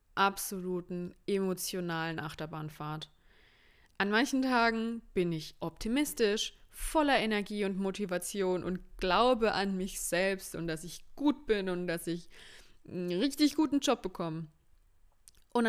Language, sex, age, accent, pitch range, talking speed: German, female, 20-39, German, 175-210 Hz, 120 wpm